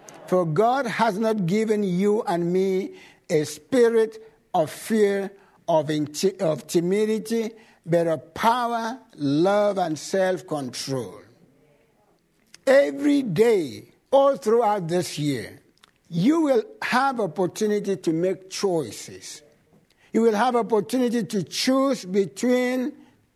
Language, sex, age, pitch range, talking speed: English, male, 60-79, 175-230 Hz, 110 wpm